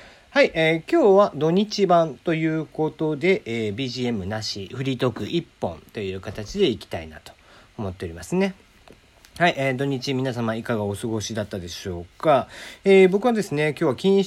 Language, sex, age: Japanese, male, 40-59